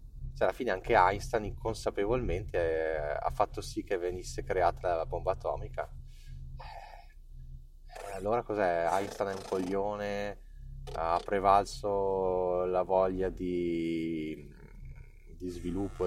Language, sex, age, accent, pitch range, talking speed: Italian, male, 20-39, native, 80-105 Hz, 100 wpm